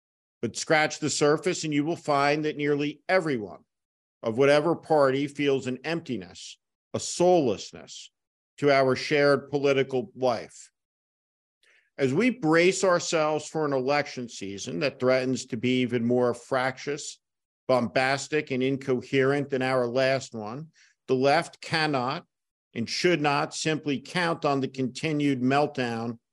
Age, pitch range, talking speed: 50-69, 130-165 Hz, 130 wpm